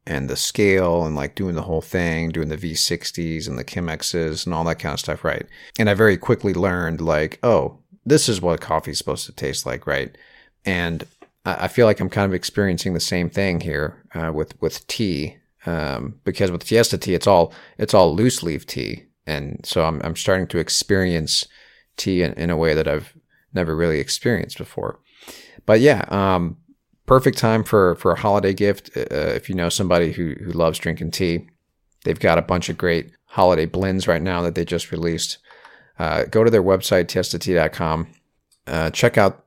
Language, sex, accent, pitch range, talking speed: English, male, American, 80-100 Hz, 195 wpm